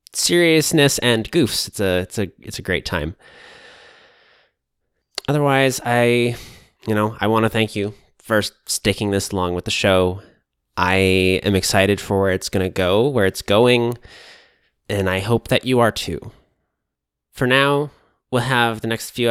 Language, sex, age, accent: English, male, 20-39, American